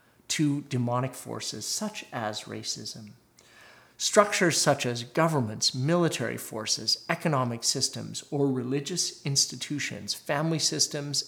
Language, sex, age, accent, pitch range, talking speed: English, male, 40-59, American, 120-150 Hz, 100 wpm